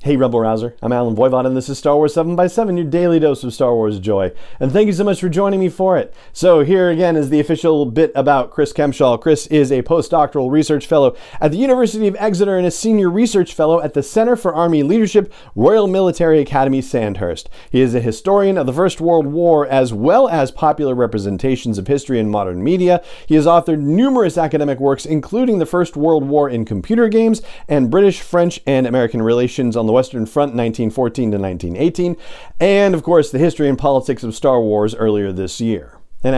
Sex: male